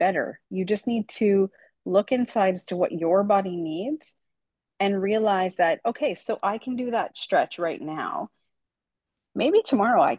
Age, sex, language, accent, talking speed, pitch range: 30-49, female, English, American, 165 wpm, 190-235 Hz